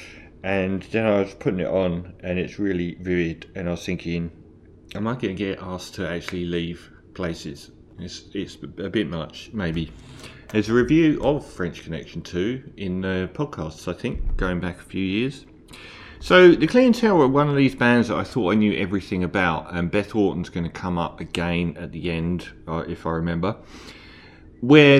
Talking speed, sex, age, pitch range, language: 190 wpm, male, 30-49, 85-110 Hz, English